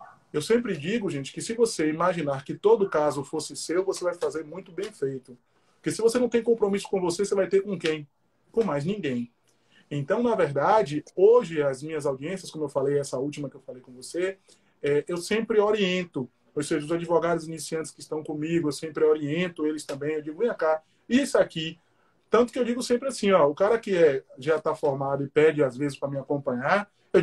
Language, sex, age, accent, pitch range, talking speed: Portuguese, male, 20-39, Brazilian, 155-230 Hz, 215 wpm